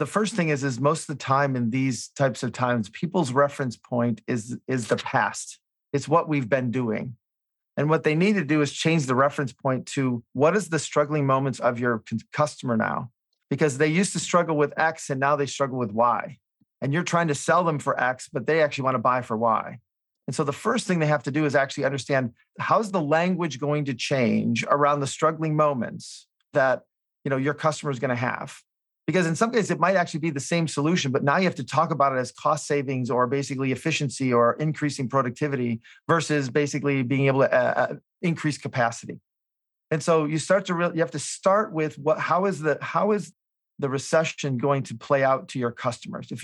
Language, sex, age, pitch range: English, male, 40-59, 130-155 Hz